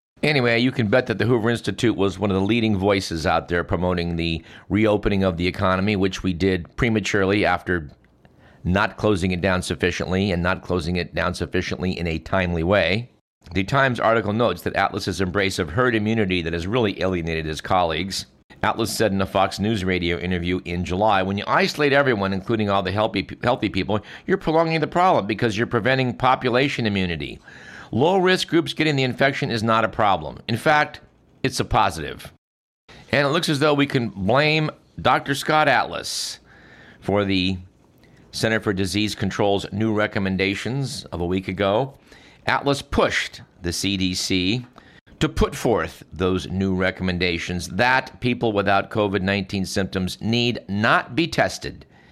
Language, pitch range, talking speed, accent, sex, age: English, 95-115 Hz, 165 wpm, American, male, 50-69